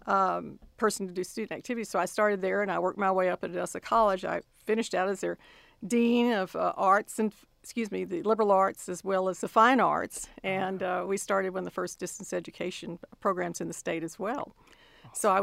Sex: female